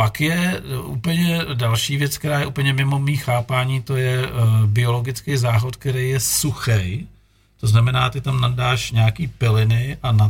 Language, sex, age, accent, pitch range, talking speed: Czech, male, 50-69, native, 110-135 Hz, 155 wpm